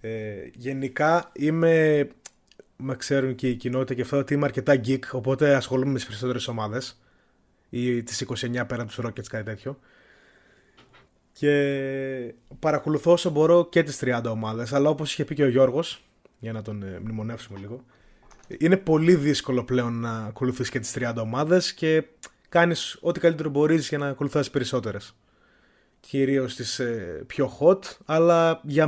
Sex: male